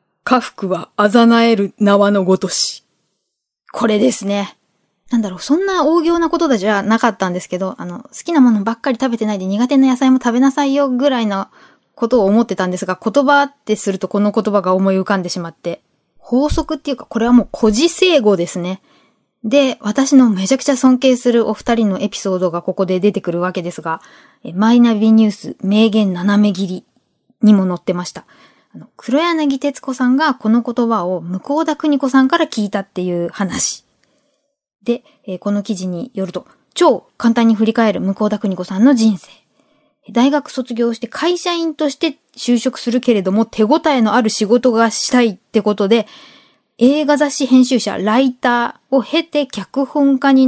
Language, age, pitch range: Japanese, 20-39, 200-275 Hz